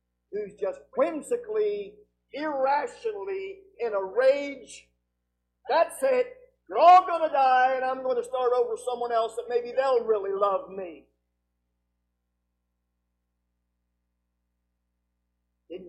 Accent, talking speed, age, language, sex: American, 115 wpm, 50-69, English, male